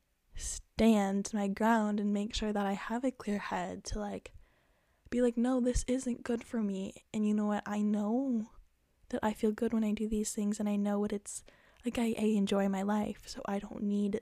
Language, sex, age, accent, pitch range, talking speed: English, female, 10-29, American, 200-220 Hz, 220 wpm